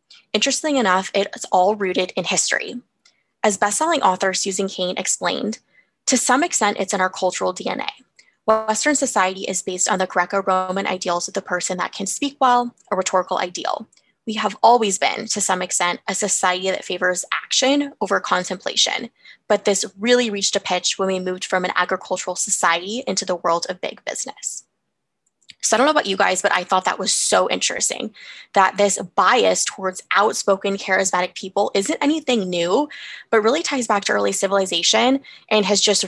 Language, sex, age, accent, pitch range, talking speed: English, female, 20-39, American, 185-225 Hz, 175 wpm